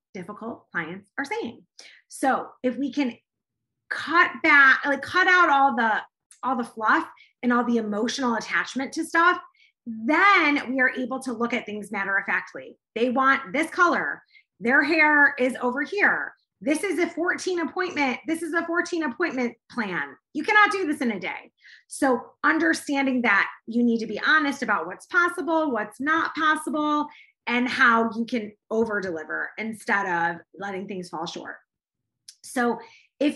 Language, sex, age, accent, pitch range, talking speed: English, female, 30-49, American, 225-310 Hz, 160 wpm